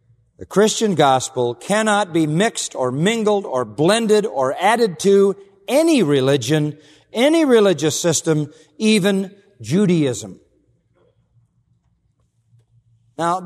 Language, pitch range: English, 145-200 Hz